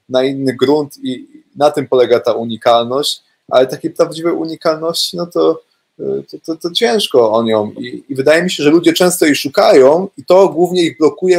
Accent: native